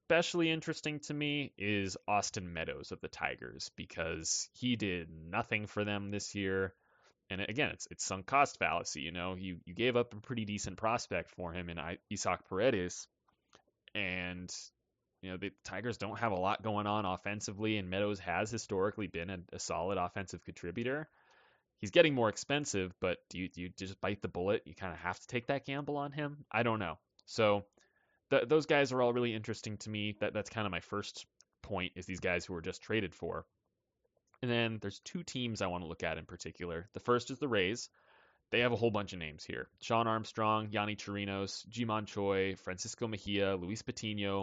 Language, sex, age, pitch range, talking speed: English, male, 20-39, 95-115 Hz, 195 wpm